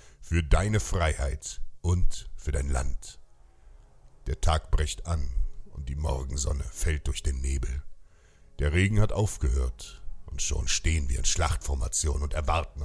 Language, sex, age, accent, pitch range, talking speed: German, male, 60-79, German, 70-85 Hz, 140 wpm